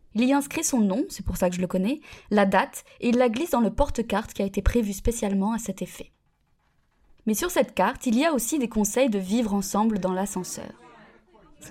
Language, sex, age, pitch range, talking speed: French, female, 20-39, 195-245 Hz, 230 wpm